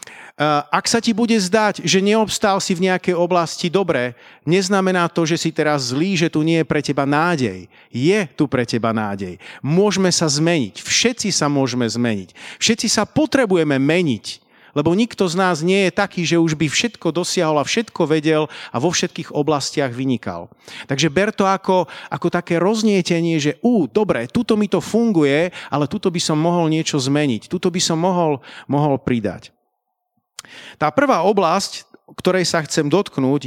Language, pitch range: Slovak, 145-190 Hz